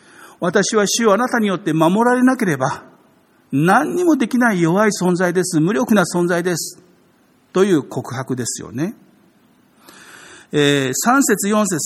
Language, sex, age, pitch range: Japanese, male, 50-69, 145-200 Hz